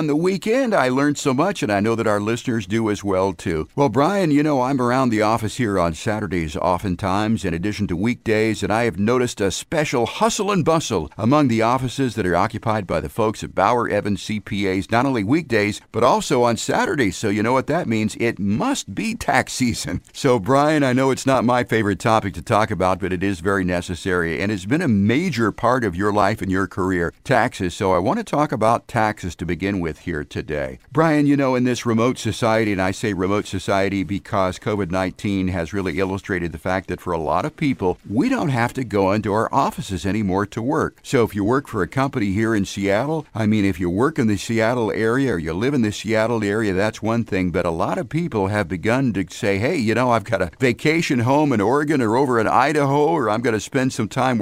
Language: English